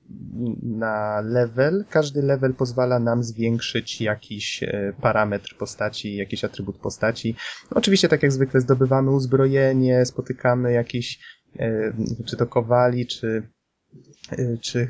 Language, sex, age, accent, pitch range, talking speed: Polish, male, 20-39, native, 115-130 Hz, 105 wpm